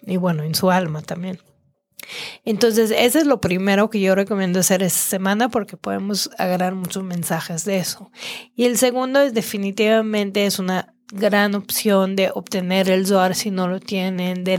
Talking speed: 175 wpm